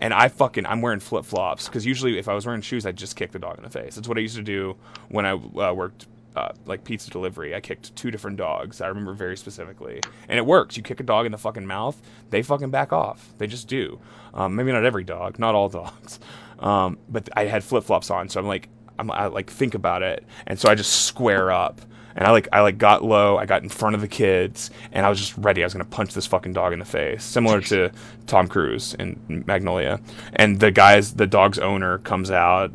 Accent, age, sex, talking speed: American, 20-39, male, 250 wpm